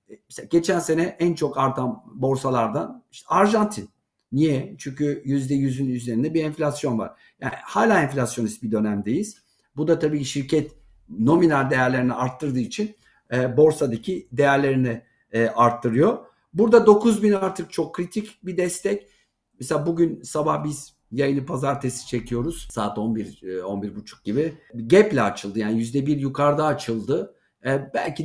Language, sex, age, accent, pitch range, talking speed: Turkish, male, 50-69, native, 125-160 Hz, 125 wpm